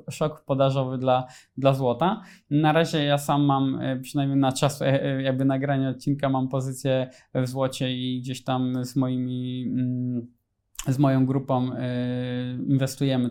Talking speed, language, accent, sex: 130 wpm, Polish, native, male